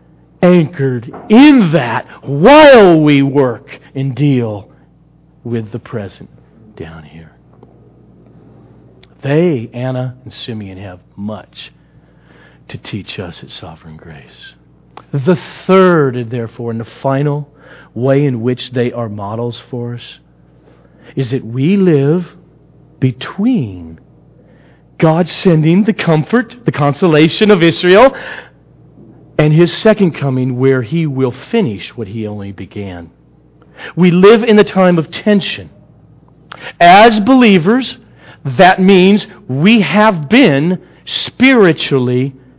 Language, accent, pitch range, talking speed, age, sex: English, American, 115-185 Hz, 115 wpm, 50-69, male